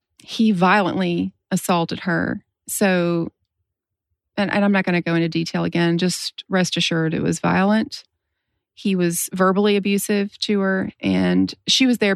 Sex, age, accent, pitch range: female, 30-49, American, 165-200 Hz